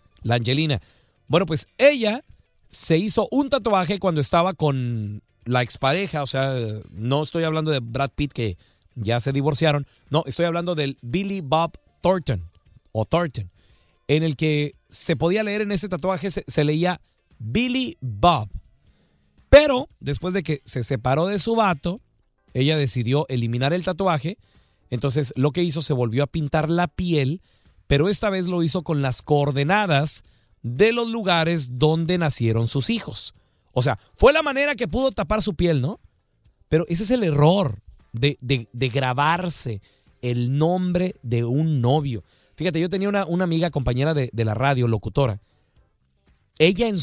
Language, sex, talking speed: Spanish, male, 160 wpm